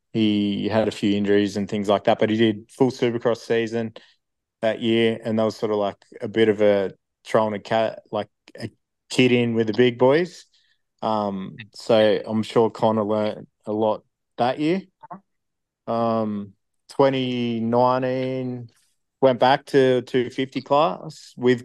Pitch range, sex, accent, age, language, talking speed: 105-120 Hz, male, Australian, 20-39, English, 155 wpm